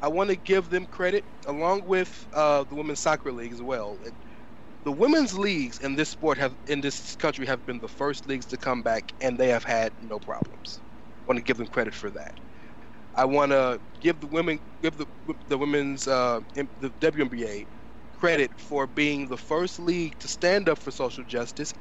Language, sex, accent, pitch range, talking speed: English, male, American, 135-170 Hz, 200 wpm